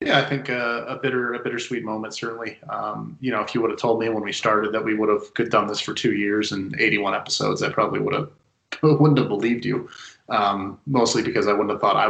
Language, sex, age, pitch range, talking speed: English, male, 30-49, 105-130 Hz, 255 wpm